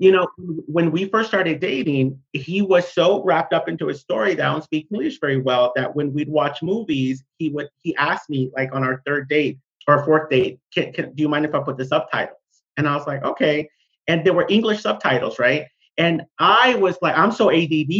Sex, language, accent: male, English, American